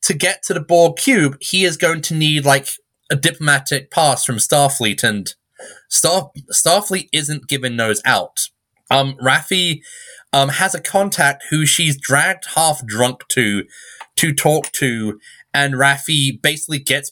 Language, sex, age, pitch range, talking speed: English, male, 20-39, 130-170 Hz, 145 wpm